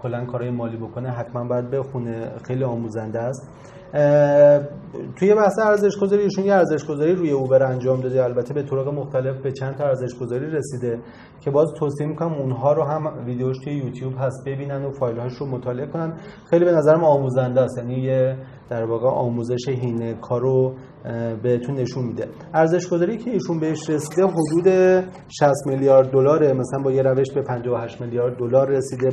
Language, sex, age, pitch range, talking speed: Persian, male, 30-49, 125-150 Hz, 170 wpm